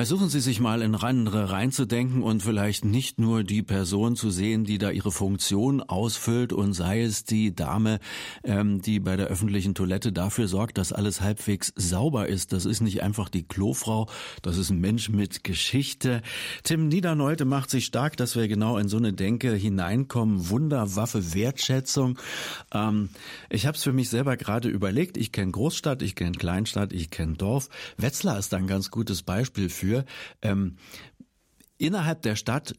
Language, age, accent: German, 50-69, German